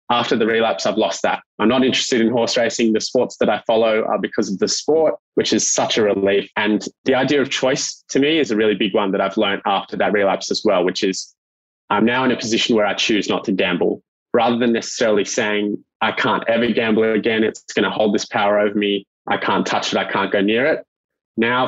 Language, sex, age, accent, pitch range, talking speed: English, male, 20-39, Australian, 105-120 Hz, 240 wpm